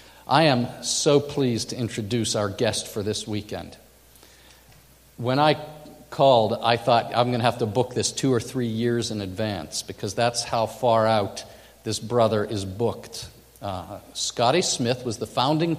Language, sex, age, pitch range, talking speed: English, male, 50-69, 115-150 Hz, 165 wpm